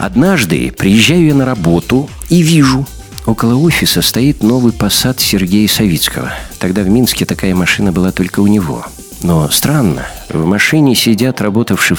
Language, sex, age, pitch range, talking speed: Russian, male, 50-69, 95-135 Hz, 145 wpm